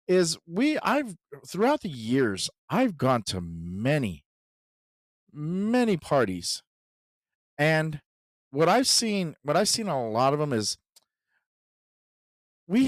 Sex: male